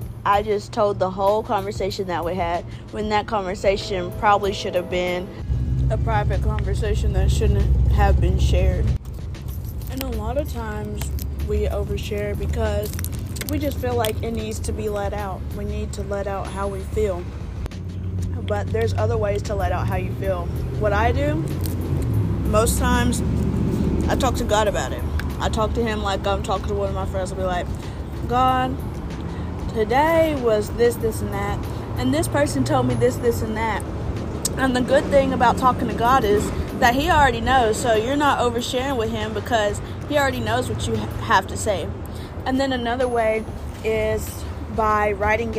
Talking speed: 180 wpm